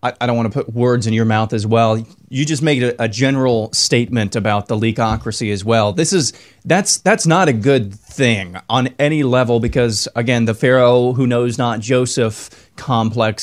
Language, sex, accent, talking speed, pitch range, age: English, male, American, 190 wpm, 115-130 Hz, 30-49